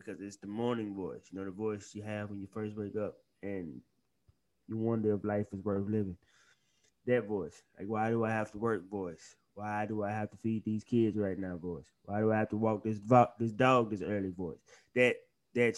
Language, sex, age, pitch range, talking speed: English, male, 20-39, 105-130 Hz, 230 wpm